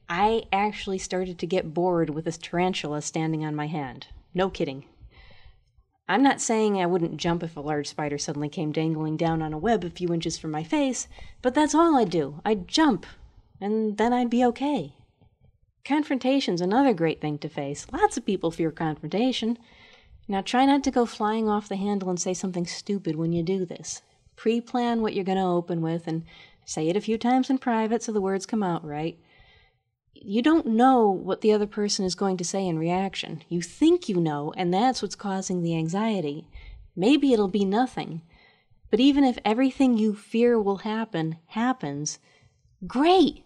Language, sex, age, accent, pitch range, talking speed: English, female, 30-49, American, 165-220 Hz, 190 wpm